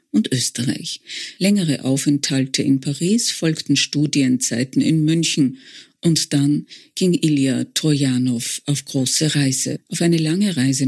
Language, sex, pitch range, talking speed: German, female, 140-165 Hz, 120 wpm